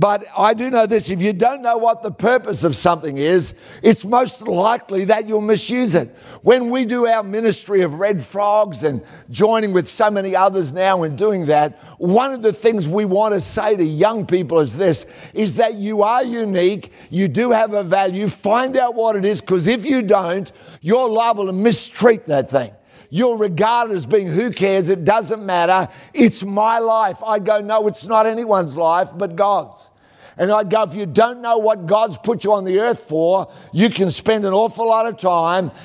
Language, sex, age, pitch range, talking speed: English, male, 60-79, 180-220 Hz, 205 wpm